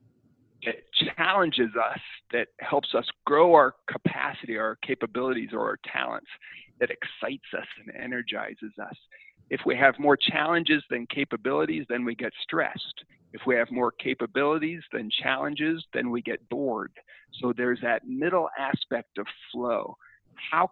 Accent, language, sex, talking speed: American, English, male, 140 wpm